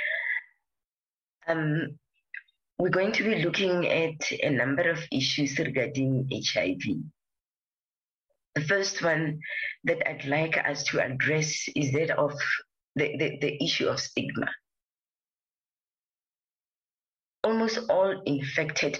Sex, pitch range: female, 140-165 Hz